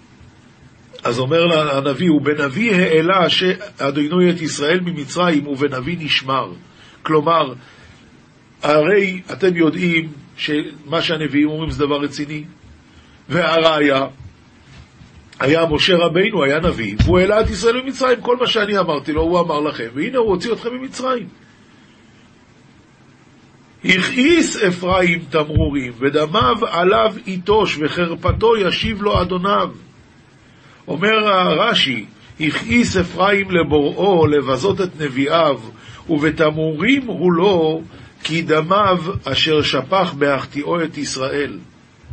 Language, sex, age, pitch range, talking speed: Hebrew, male, 50-69, 145-185 Hz, 105 wpm